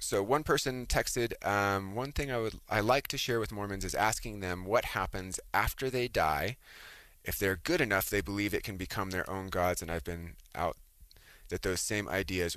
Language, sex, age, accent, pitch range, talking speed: English, male, 20-39, American, 85-100 Hz, 205 wpm